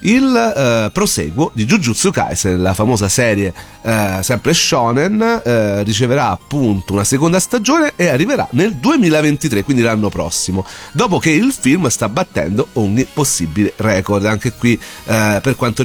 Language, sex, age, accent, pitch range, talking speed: Italian, male, 40-59, native, 105-155 Hz, 135 wpm